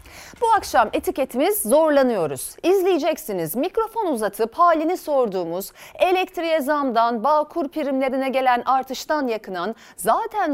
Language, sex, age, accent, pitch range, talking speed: Turkish, female, 40-59, native, 235-315 Hz, 100 wpm